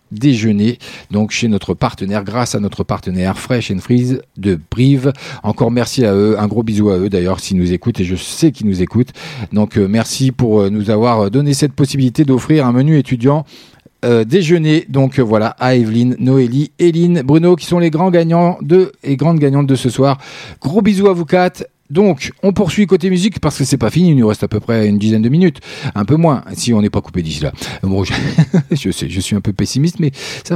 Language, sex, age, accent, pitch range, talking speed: French, male, 40-59, French, 110-170 Hz, 225 wpm